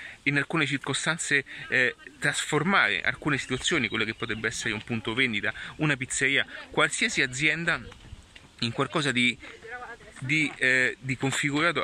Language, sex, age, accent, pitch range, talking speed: Italian, male, 30-49, native, 120-145 Hz, 115 wpm